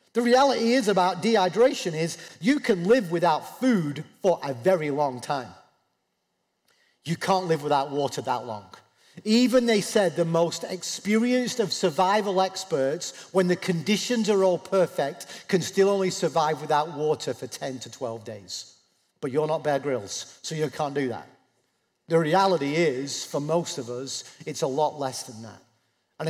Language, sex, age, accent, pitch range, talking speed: English, male, 40-59, British, 125-180 Hz, 165 wpm